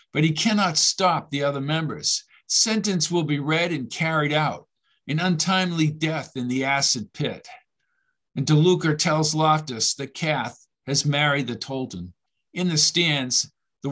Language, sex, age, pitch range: English, male, 50-69, 140-180 Hz